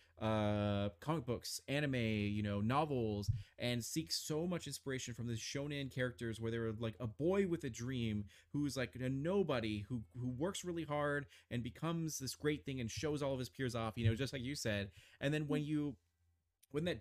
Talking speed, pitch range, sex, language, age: 200 wpm, 110-145 Hz, male, English, 30-49